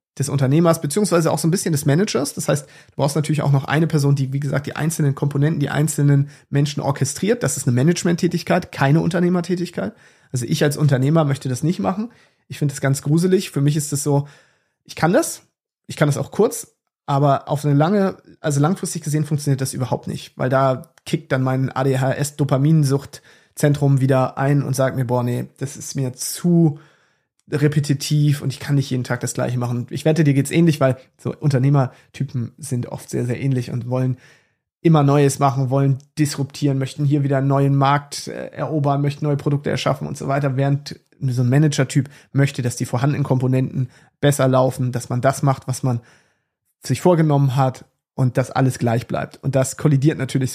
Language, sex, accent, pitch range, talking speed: German, male, German, 130-150 Hz, 190 wpm